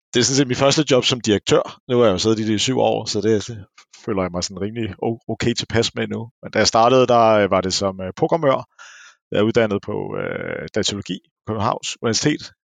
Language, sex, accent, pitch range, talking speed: Danish, male, native, 100-125 Hz, 225 wpm